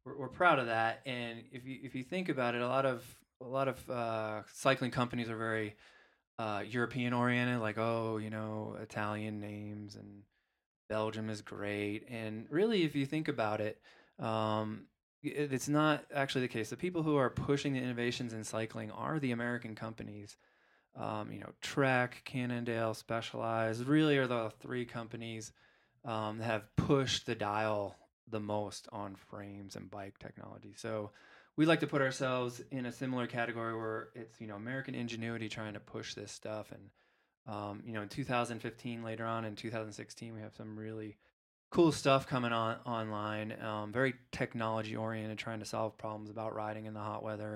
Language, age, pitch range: English, 20-39, 110-125 Hz